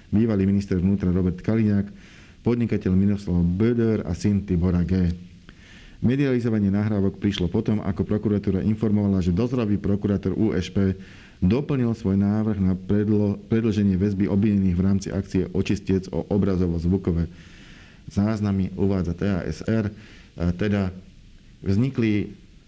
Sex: male